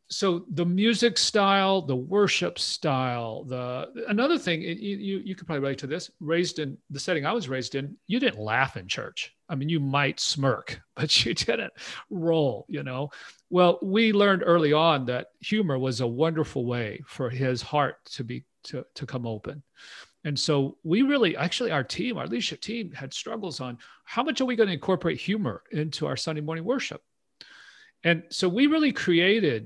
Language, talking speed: English, 190 wpm